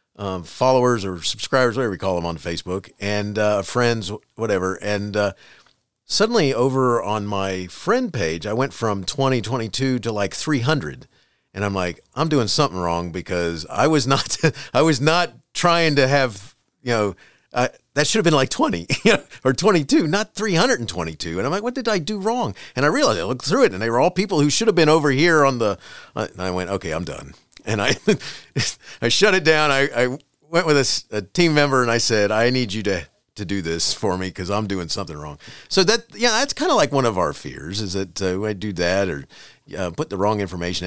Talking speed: 220 wpm